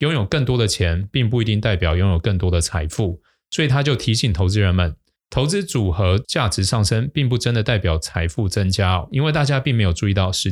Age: 20-39